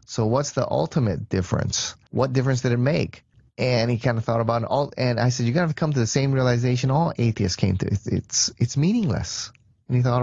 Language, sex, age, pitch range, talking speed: English, male, 30-49, 110-145 Hz, 240 wpm